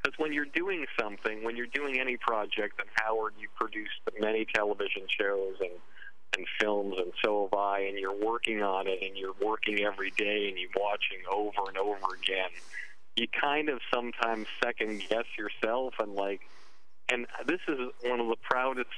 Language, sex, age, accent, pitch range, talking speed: English, male, 40-59, American, 105-125 Hz, 175 wpm